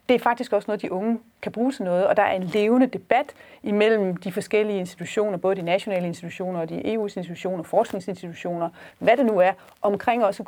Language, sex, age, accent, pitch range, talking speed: Danish, female, 30-49, native, 185-225 Hz, 205 wpm